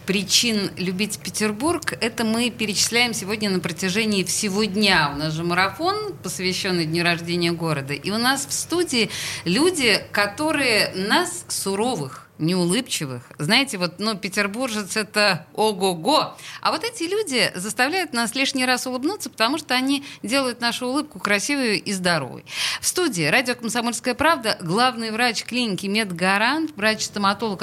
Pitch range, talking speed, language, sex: 190-270 Hz, 135 wpm, Russian, female